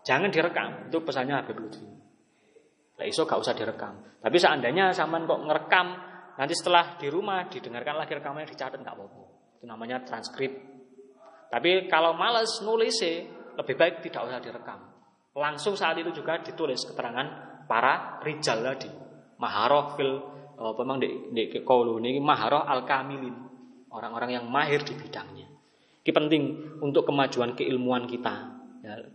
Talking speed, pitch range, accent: 125 wpm, 130-175 Hz, native